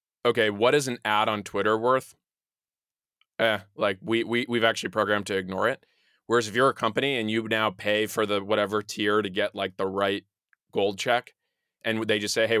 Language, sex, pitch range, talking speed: English, male, 105-120 Hz, 205 wpm